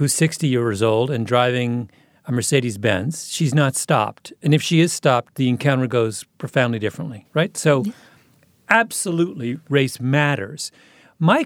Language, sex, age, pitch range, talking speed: English, male, 40-59, 125-165 Hz, 140 wpm